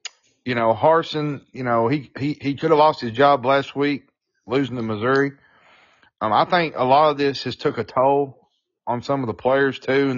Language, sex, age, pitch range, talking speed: English, male, 30-49, 120-150 Hz, 210 wpm